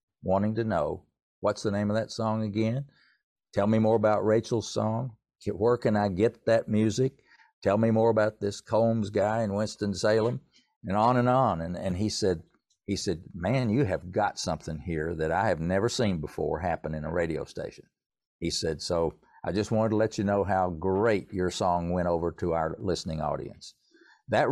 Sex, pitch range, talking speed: male, 95-115 Hz, 195 wpm